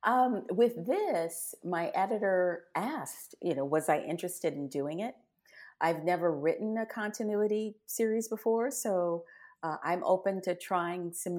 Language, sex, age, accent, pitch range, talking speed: English, female, 40-59, American, 170-220 Hz, 150 wpm